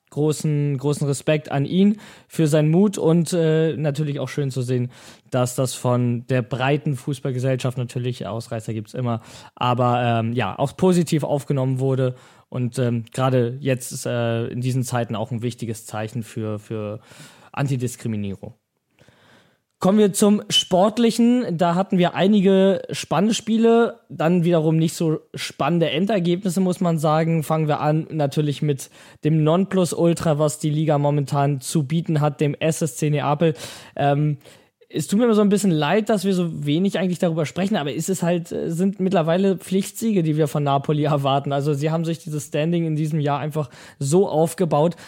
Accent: German